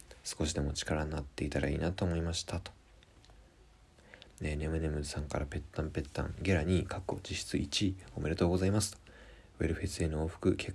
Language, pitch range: Japanese, 75-95 Hz